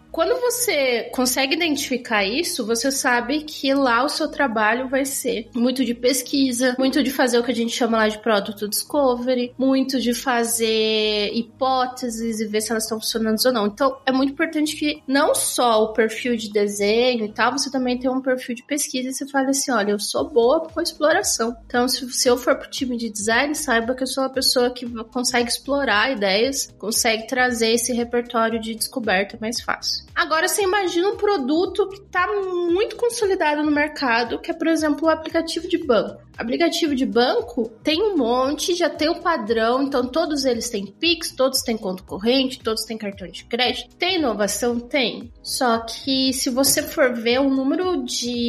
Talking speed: 190 wpm